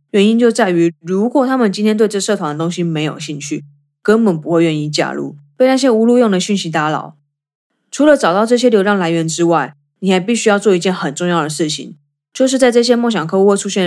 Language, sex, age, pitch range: Chinese, female, 20-39, 155-225 Hz